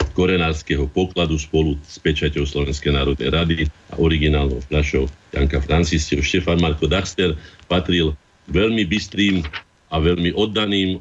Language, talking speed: Slovak, 120 wpm